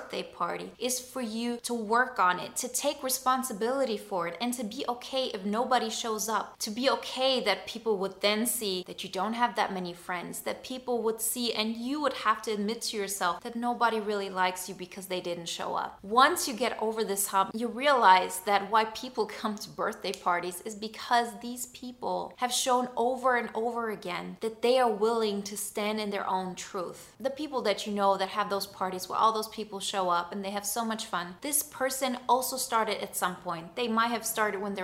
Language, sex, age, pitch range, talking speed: English, female, 20-39, 195-240 Hz, 220 wpm